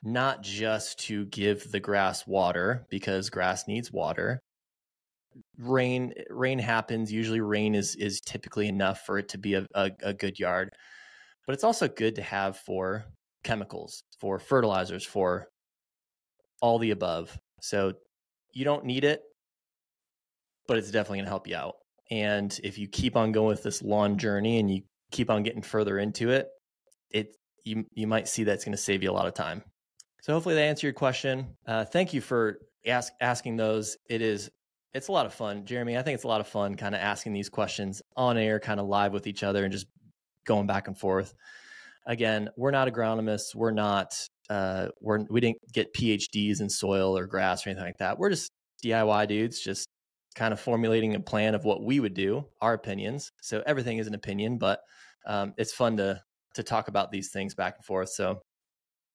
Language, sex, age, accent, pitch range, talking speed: English, male, 20-39, American, 100-115 Hz, 195 wpm